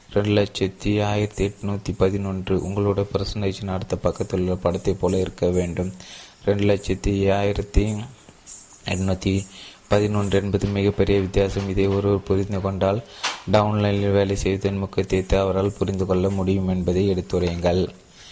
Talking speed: 120 wpm